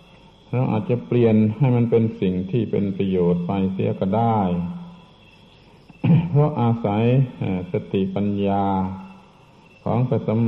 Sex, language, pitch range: male, Thai, 100-125 Hz